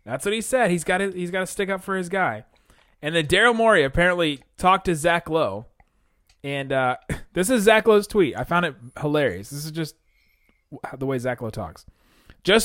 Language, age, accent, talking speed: English, 30-49, American, 210 wpm